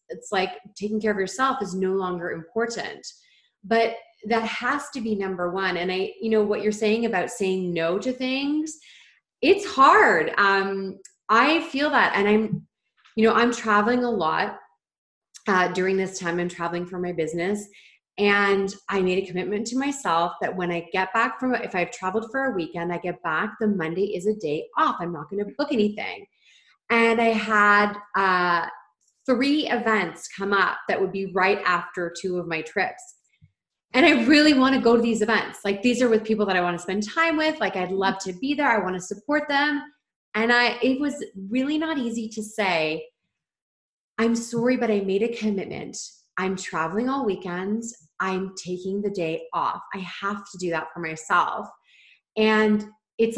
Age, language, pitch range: 30-49, English, 185-230 Hz